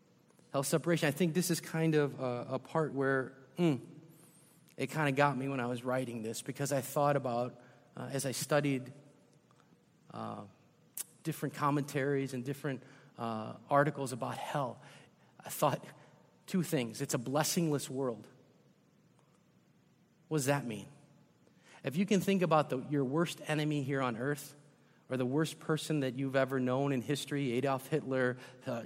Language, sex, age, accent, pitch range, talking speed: English, male, 40-59, American, 130-155 Hz, 160 wpm